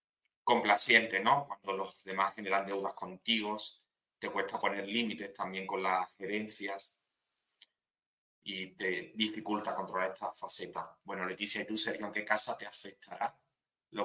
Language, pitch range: Spanish, 95-110 Hz